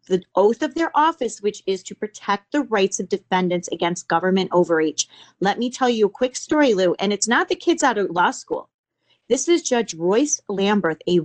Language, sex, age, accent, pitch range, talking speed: English, female, 40-59, American, 175-255 Hz, 210 wpm